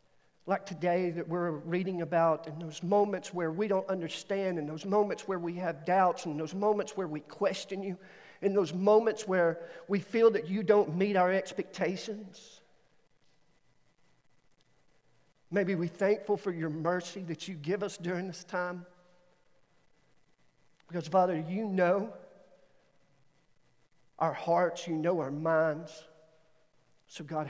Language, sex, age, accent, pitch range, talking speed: English, male, 50-69, American, 165-220 Hz, 140 wpm